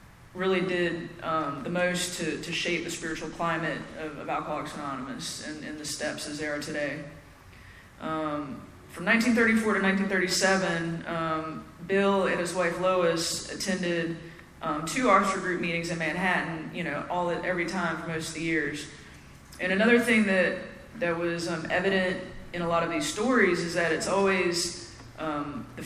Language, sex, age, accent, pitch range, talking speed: English, female, 20-39, American, 155-185 Hz, 170 wpm